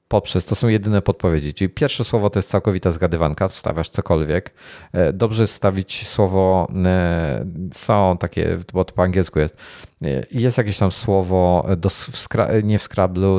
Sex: male